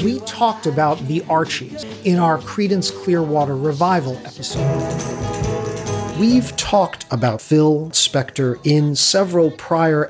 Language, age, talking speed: English, 50-69, 115 wpm